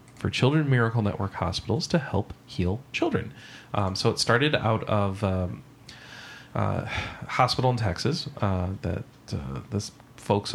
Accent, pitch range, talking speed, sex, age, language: American, 95-120 Hz, 140 wpm, male, 30-49, English